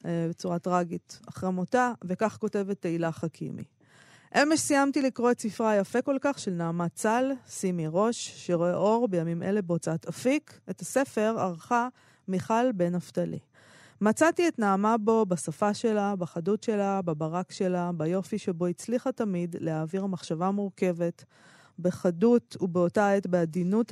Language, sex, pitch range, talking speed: Hebrew, female, 175-225 Hz, 135 wpm